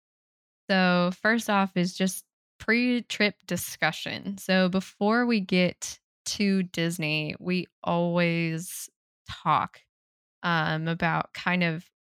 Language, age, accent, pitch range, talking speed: English, 10-29, American, 160-180 Hz, 100 wpm